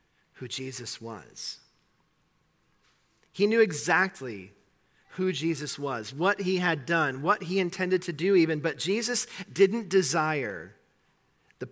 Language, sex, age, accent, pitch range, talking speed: English, male, 40-59, American, 150-215 Hz, 125 wpm